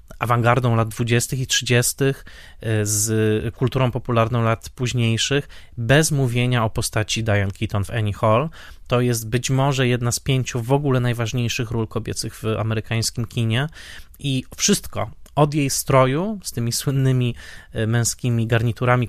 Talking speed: 140 wpm